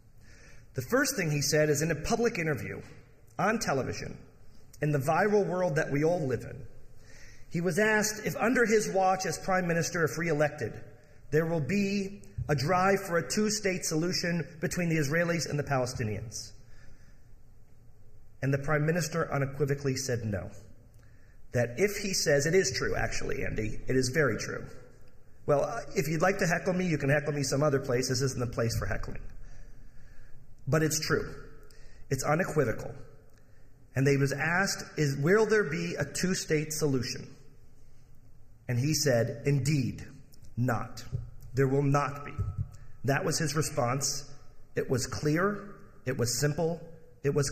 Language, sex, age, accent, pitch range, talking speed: English, male, 40-59, American, 120-160 Hz, 155 wpm